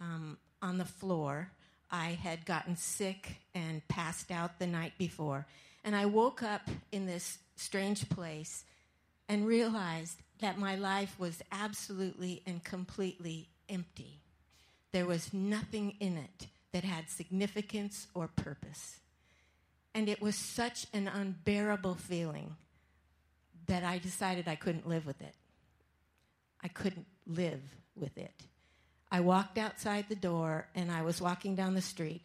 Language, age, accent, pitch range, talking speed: English, 50-69, American, 165-200 Hz, 140 wpm